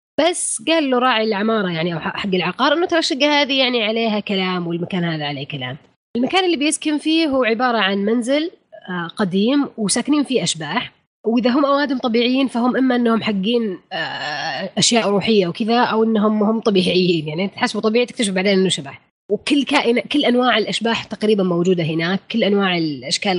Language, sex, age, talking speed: Arabic, female, 20-39, 165 wpm